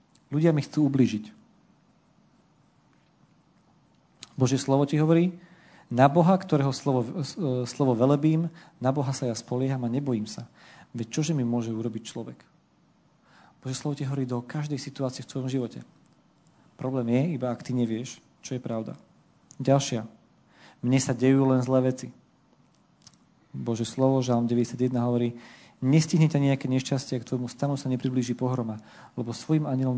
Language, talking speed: Slovak, 145 wpm